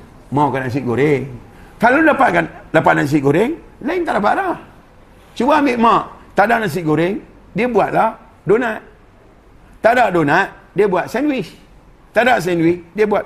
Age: 50-69